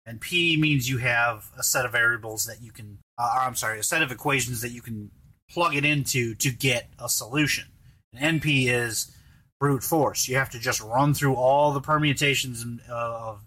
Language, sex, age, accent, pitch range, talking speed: English, male, 30-49, American, 115-140 Hz, 200 wpm